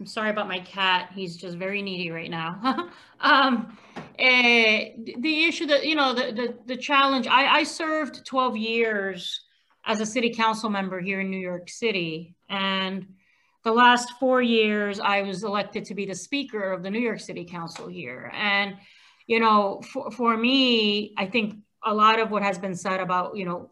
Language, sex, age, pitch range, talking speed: English, female, 30-49, 205-255 Hz, 185 wpm